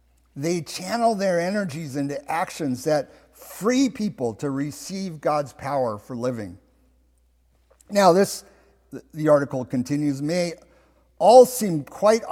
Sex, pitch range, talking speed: male, 125-190 Hz, 115 wpm